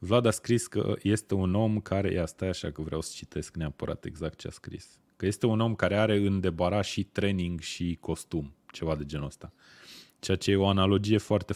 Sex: male